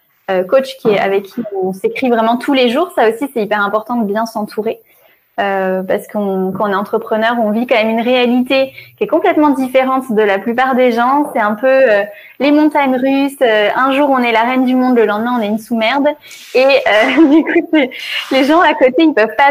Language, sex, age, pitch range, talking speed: French, female, 20-39, 210-275 Hz, 235 wpm